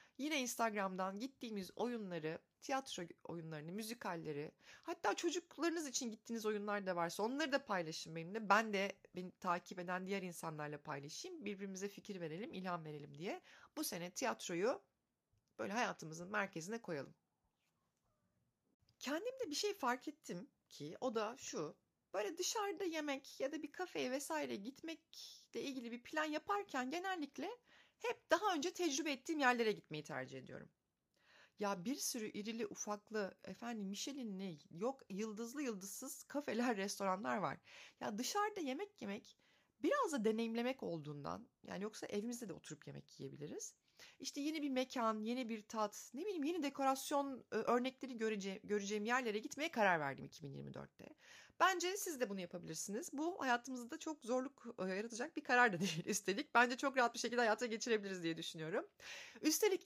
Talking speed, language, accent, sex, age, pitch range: 145 wpm, Turkish, native, female, 30-49, 195-300 Hz